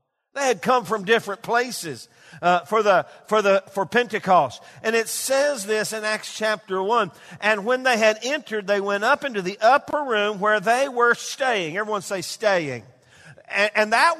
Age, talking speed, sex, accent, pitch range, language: 50-69, 170 wpm, male, American, 180-250 Hz, English